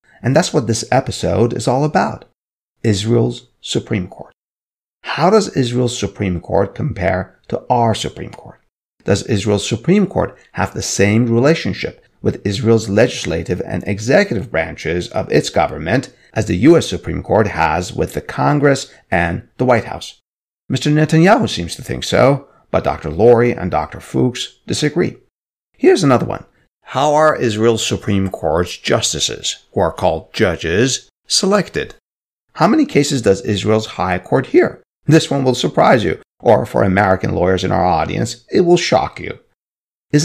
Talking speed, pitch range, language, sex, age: 155 wpm, 95-150 Hz, English, male, 50-69